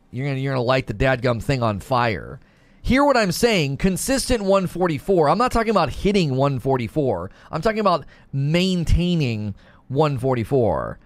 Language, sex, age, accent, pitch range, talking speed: English, male, 30-49, American, 130-185 Hz, 150 wpm